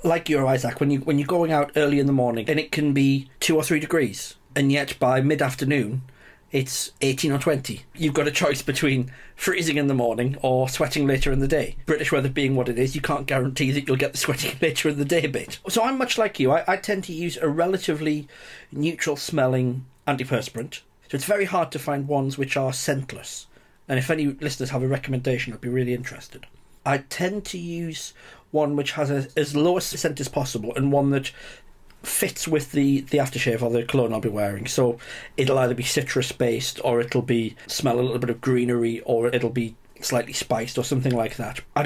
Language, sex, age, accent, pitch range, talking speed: English, male, 40-59, British, 125-150 Hz, 220 wpm